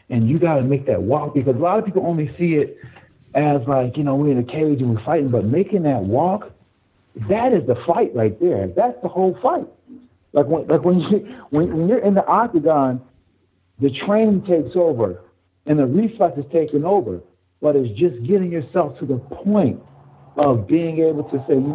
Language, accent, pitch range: English, American, 120-170 Hz